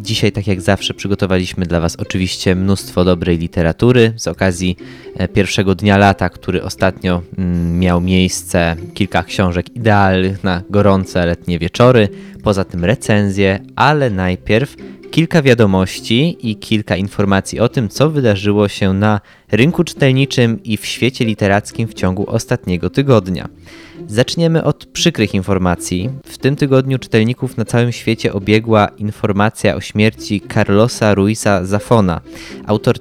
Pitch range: 95-120 Hz